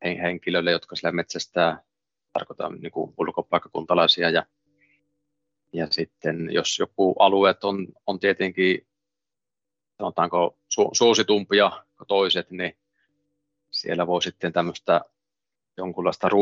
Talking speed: 90 wpm